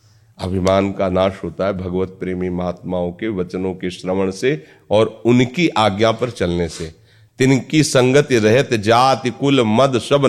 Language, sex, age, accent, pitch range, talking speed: Hindi, male, 40-59, native, 95-110 Hz, 150 wpm